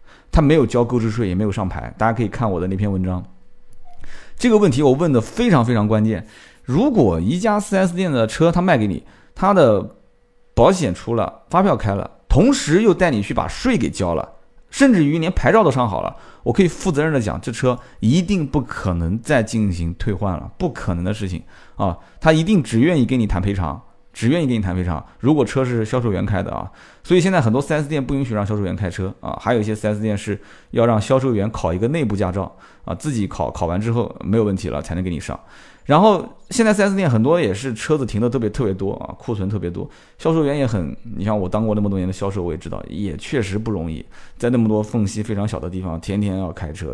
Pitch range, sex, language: 95-140 Hz, male, Chinese